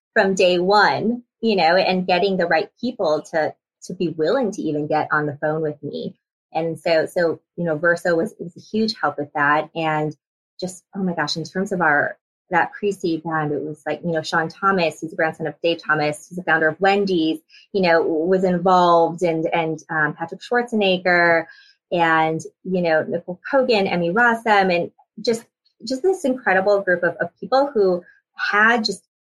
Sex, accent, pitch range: female, American, 160-200 Hz